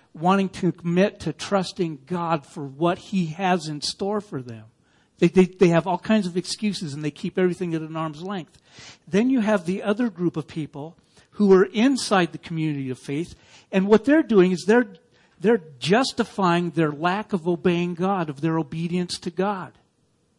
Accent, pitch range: American, 165-210 Hz